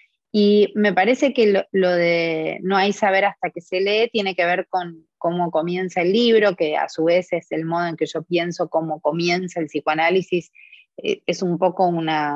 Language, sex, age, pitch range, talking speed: Spanish, female, 20-39, 160-195 Hz, 200 wpm